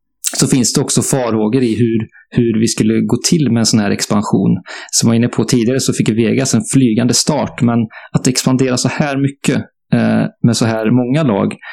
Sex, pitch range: male, 110-130 Hz